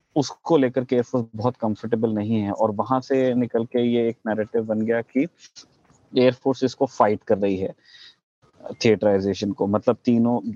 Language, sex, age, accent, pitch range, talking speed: Hindi, male, 20-39, native, 110-125 Hz, 165 wpm